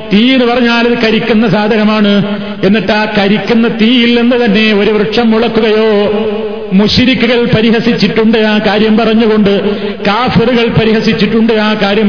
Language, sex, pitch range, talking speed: Malayalam, male, 215-235 Hz, 110 wpm